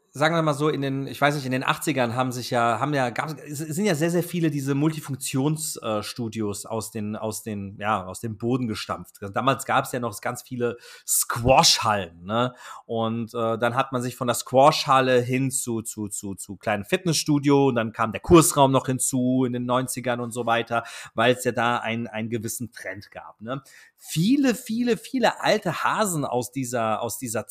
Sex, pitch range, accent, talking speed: male, 125-170 Hz, German, 200 wpm